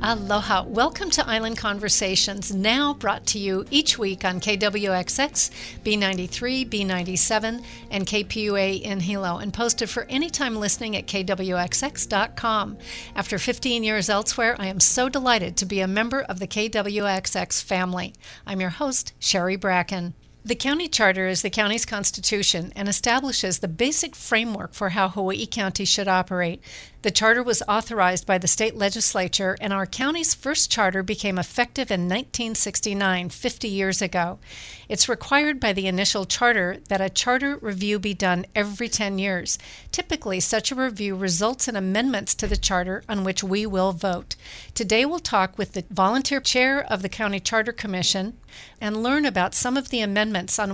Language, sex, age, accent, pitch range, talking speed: English, female, 50-69, American, 190-230 Hz, 160 wpm